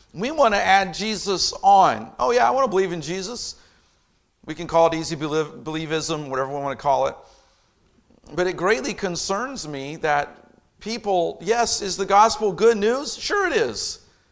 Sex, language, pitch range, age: male, English, 170-230 Hz, 50-69